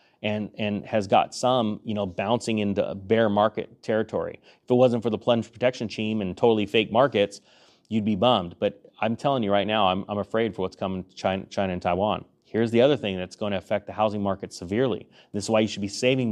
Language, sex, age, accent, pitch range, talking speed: English, male, 30-49, American, 100-125 Hz, 230 wpm